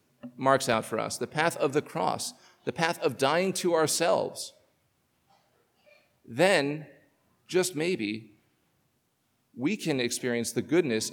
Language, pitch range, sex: English, 125-175 Hz, male